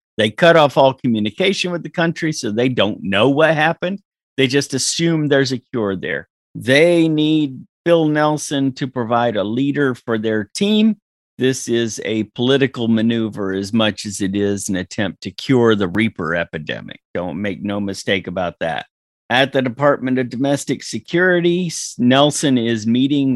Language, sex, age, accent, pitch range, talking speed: English, male, 50-69, American, 115-155 Hz, 165 wpm